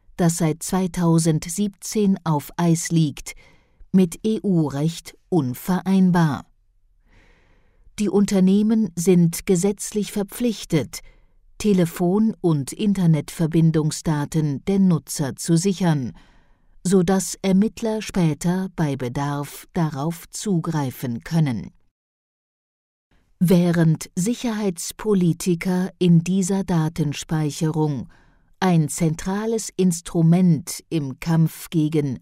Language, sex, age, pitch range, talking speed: German, female, 50-69, 150-190 Hz, 75 wpm